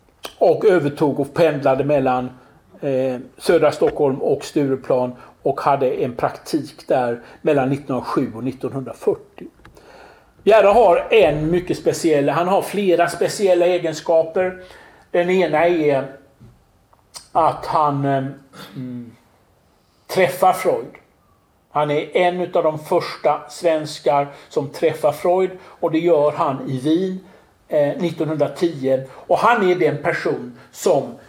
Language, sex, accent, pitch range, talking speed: English, male, Swedish, 135-180 Hz, 110 wpm